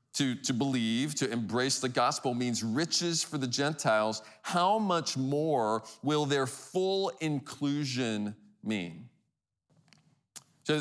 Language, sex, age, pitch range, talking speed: English, male, 40-59, 115-150 Hz, 115 wpm